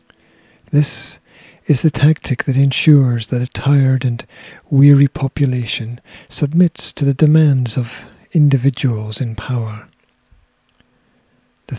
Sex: male